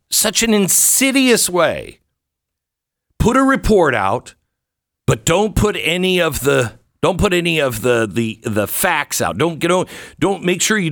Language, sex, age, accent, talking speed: English, male, 50-69, American, 160 wpm